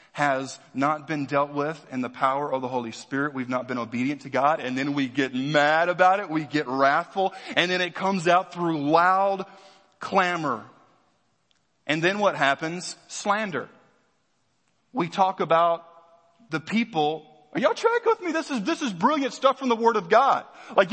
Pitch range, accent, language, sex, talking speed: 135-200 Hz, American, English, male, 180 wpm